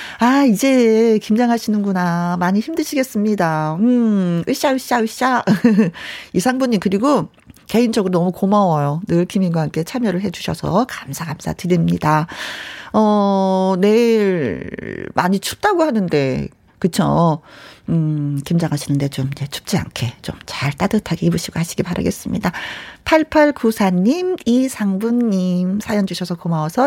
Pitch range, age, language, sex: 170-235 Hz, 40-59, Korean, female